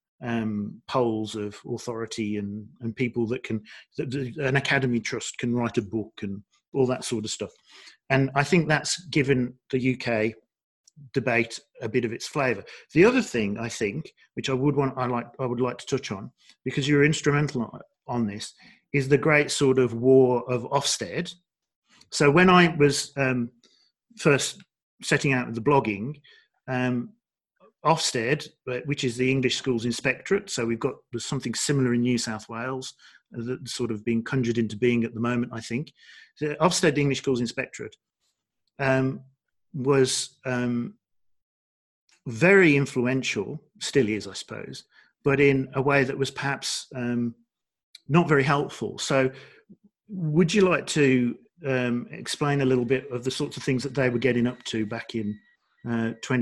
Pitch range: 120-140 Hz